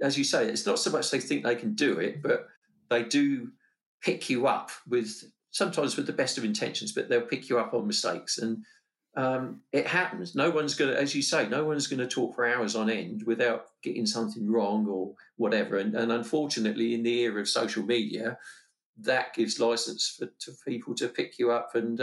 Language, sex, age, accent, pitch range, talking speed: English, male, 50-69, British, 115-140 Hz, 215 wpm